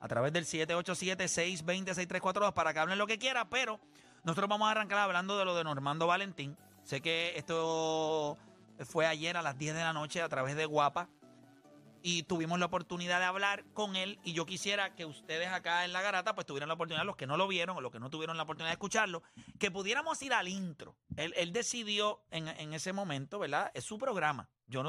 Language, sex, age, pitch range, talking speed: Spanish, male, 30-49, 155-195 Hz, 210 wpm